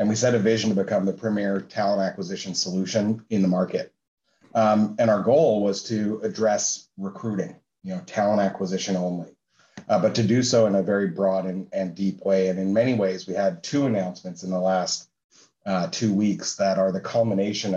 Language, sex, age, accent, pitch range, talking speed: English, male, 30-49, American, 95-110 Hz, 200 wpm